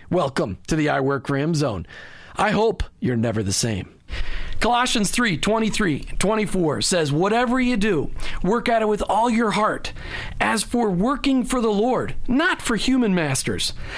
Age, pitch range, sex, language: 40-59, 165-230 Hz, male, English